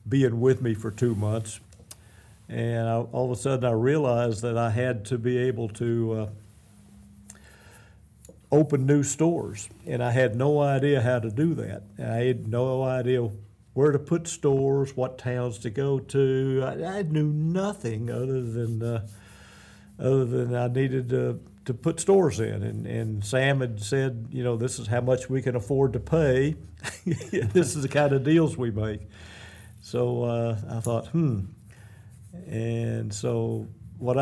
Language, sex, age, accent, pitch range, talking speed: English, male, 50-69, American, 105-130 Hz, 165 wpm